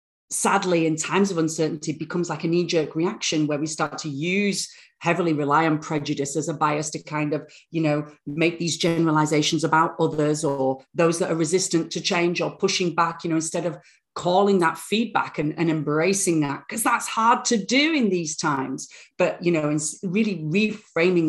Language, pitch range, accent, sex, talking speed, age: English, 155-185 Hz, British, female, 190 wpm, 40-59